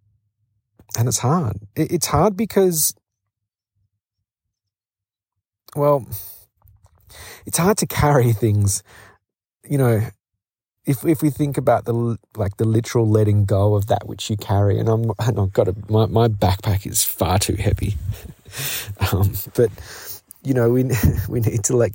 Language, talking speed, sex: English, 135 wpm, male